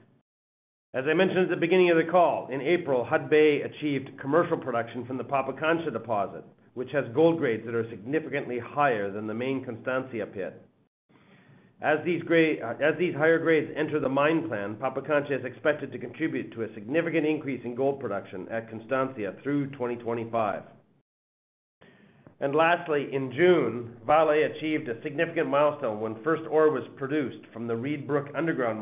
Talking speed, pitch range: 165 wpm, 120-160 Hz